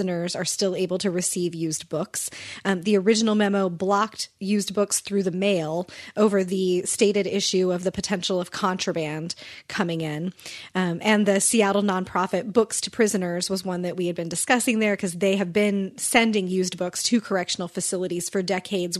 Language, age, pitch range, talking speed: English, 30-49, 175-205 Hz, 175 wpm